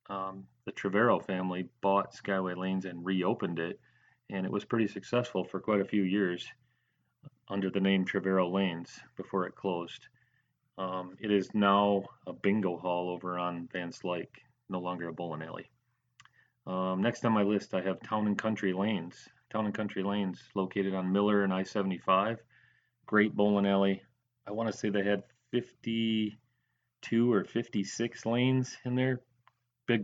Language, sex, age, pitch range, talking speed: English, male, 40-59, 95-110 Hz, 155 wpm